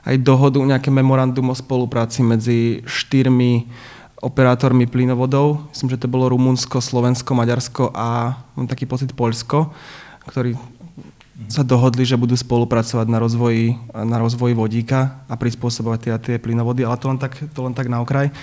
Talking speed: 155 wpm